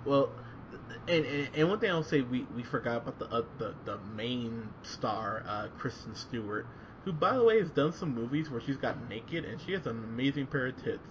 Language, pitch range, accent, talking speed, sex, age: English, 115-155 Hz, American, 220 wpm, male, 20-39